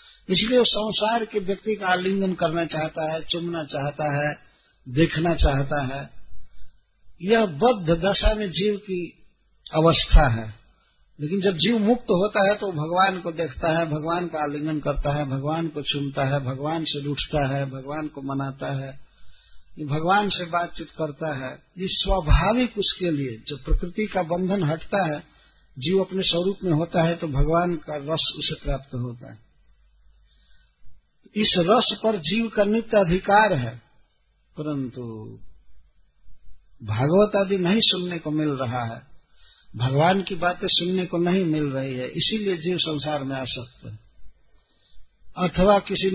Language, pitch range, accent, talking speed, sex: Hindi, 135-190 Hz, native, 150 wpm, male